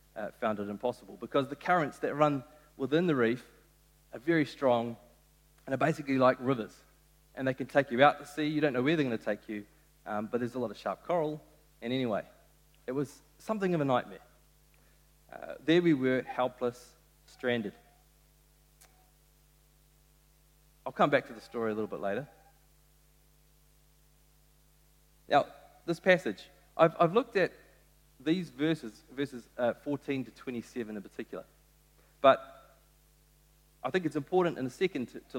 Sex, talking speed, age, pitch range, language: male, 160 wpm, 30-49, 125-150 Hz, English